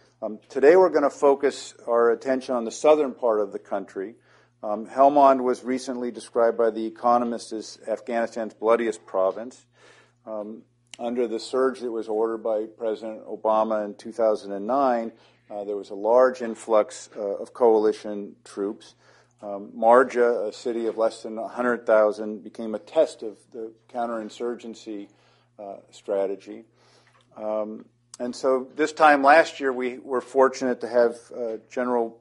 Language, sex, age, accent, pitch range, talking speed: English, male, 50-69, American, 110-125 Hz, 145 wpm